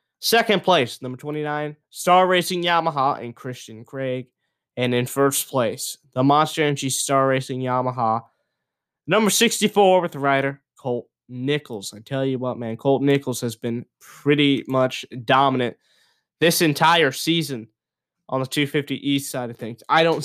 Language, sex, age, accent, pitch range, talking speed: English, male, 20-39, American, 130-170 Hz, 150 wpm